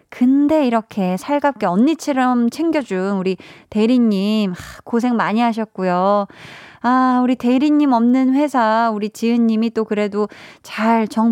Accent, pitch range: native, 195-255 Hz